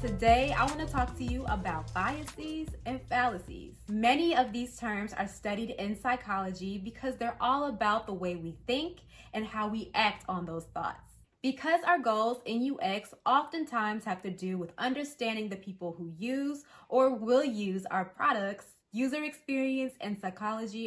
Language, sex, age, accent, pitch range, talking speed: English, female, 20-39, American, 200-260 Hz, 165 wpm